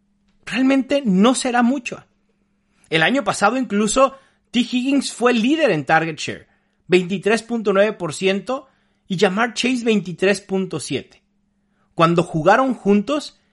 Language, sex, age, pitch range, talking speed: Spanish, male, 40-59, 175-225 Hz, 100 wpm